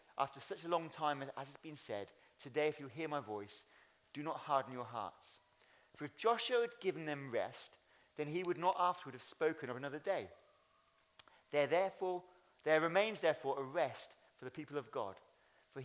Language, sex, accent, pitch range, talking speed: English, male, British, 125-165 Hz, 185 wpm